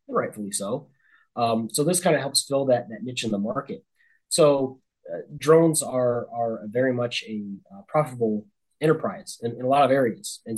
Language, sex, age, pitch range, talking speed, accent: English, male, 20-39, 110-135 Hz, 185 wpm, American